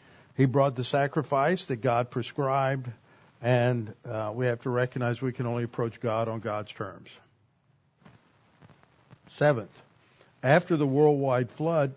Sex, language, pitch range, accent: male, English, 125-150 Hz, American